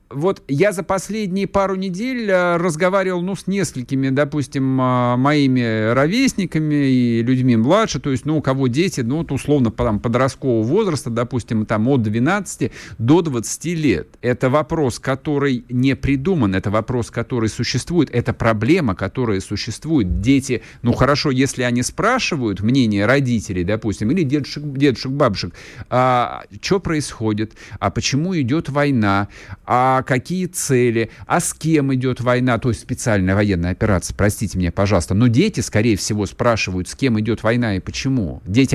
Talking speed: 145 wpm